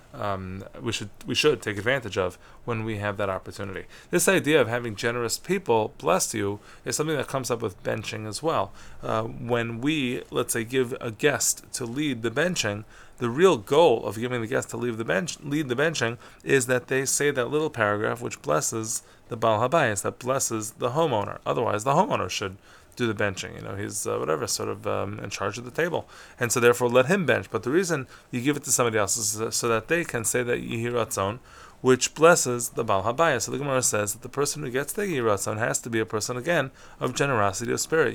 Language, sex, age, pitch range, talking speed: English, male, 20-39, 110-135 Hz, 220 wpm